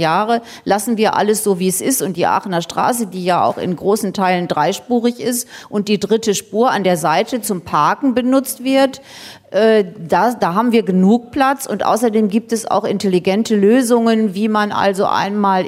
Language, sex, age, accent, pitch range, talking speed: German, female, 40-59, German, 185-230 Hz, 185 wpm